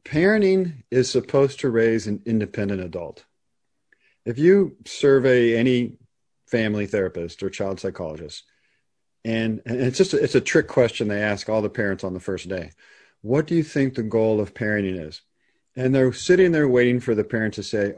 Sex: male